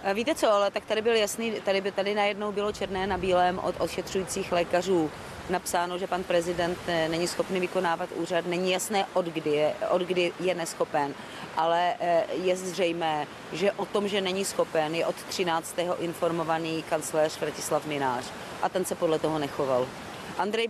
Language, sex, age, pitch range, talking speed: Czech, female, 30-49, 180-205 Hz, 160 wpm